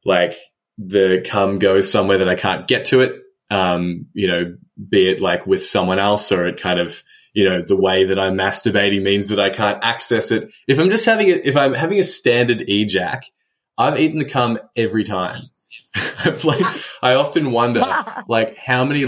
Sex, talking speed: male, 195 wpm